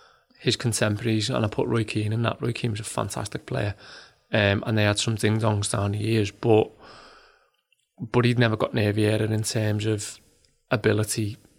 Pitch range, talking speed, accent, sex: 110-125 Hz, 175 wpm, British, male